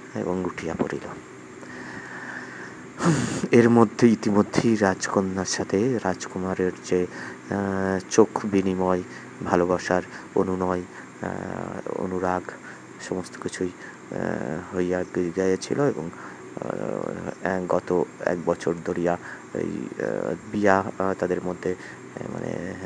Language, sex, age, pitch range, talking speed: Bengali, male, 30-49, 85-95 Hz, 75 wpm